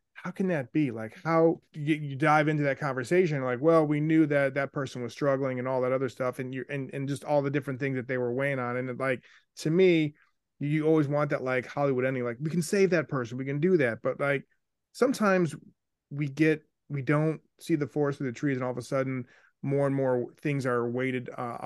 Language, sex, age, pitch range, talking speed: English, male, 30-49, 130-150 Hz, 235 wpm